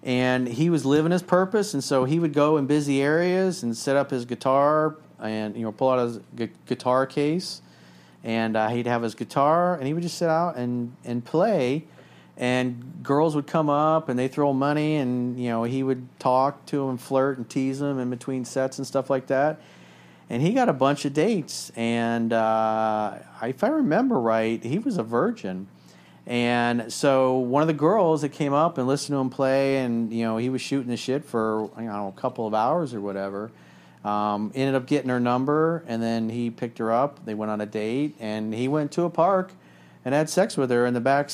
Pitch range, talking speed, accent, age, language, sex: 110-145 Hz, 225 wpm, American, 40-59, English, male